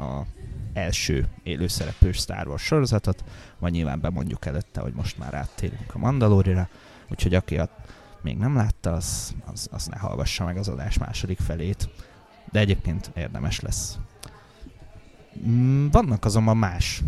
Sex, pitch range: male, 90-110 Hz